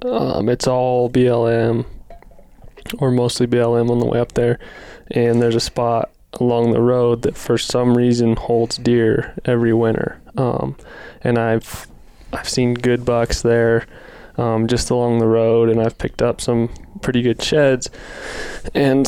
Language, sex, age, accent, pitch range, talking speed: English, male, 20-39, American, 115-120 Hz, 155 wpm